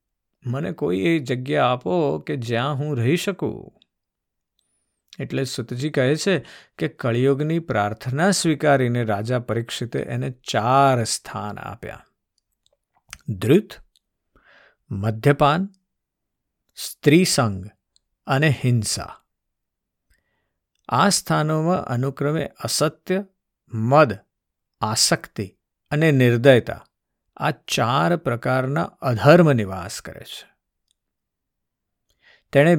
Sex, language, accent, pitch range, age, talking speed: male, Gujarati, native, 115-150 Hz, 50-69, 60 wpm